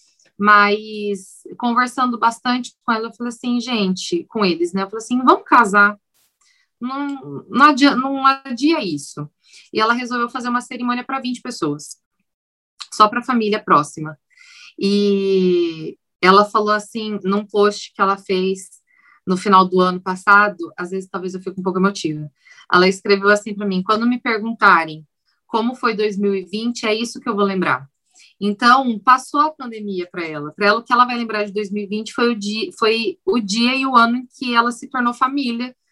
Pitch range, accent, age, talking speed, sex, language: 200-245 Hz, Brazilian, 20-39, 170 wpm, female, Portuguese